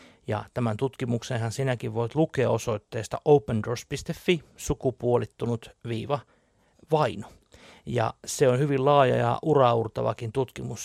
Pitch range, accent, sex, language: 115-140 Hz, native, male, Finnish